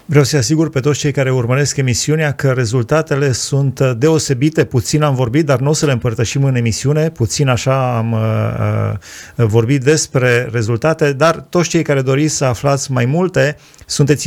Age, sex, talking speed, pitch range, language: 30-49, male, 175 wpm, 120-155 Hz, Romanian